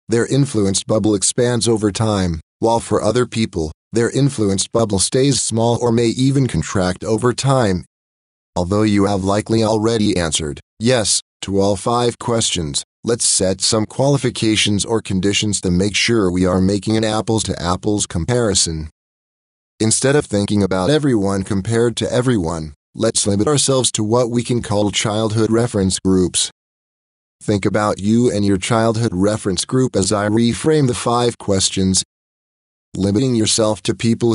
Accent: American